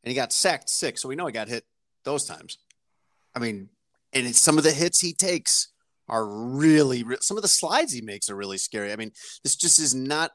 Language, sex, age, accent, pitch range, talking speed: English, male, 30-49, American, 115-135 Hz, 225 wpm